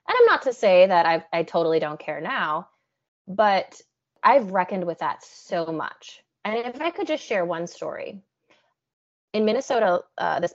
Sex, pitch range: female, 170-230 Hz